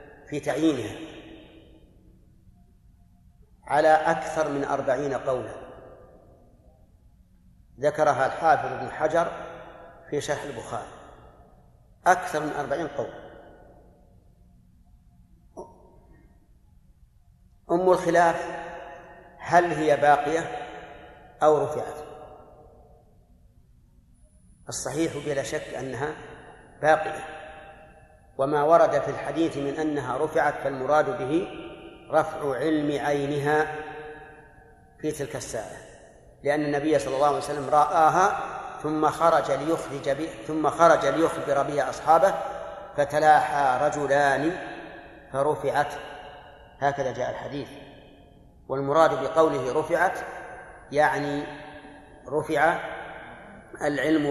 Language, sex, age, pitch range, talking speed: Arabic, male, 50-69, 145-155 Hz, 80 wpm